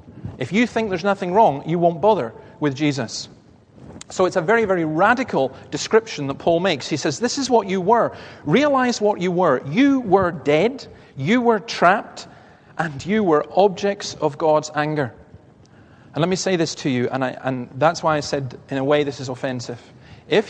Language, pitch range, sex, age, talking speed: English, 135-195 Hz, male, 40-59, 190 wpm